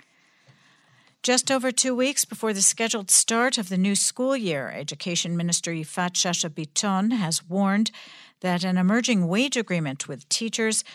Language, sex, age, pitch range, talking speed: English, female, 50-69, 165-220 Hz, 145 wpm